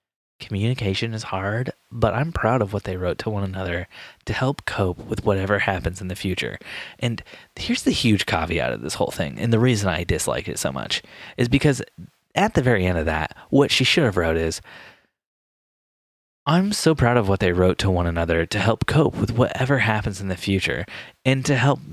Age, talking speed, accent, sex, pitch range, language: 20-39, 205 wpm, American, male, 95-125 Hz, English